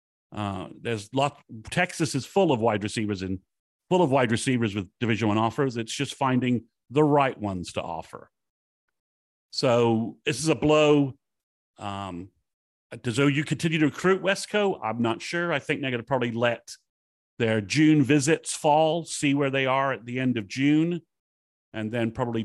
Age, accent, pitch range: 40-59, American, 105-145 Hz